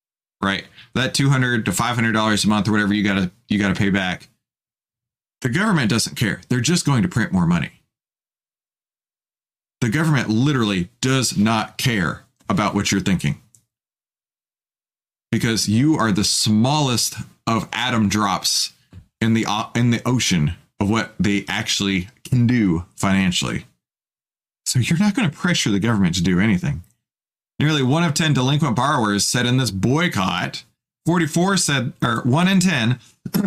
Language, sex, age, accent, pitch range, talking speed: English, male, 30-49, American, 110-160 Hz, 150 wpm